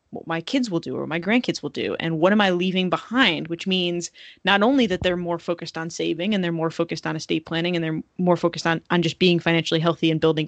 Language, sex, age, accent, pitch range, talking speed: English, female, 20-39, American, 165-195 Hz, 260 wpm